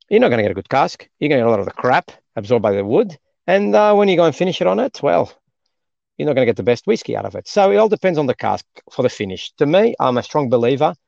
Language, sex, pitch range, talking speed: English, male, 100-135 Hz, 320 wpm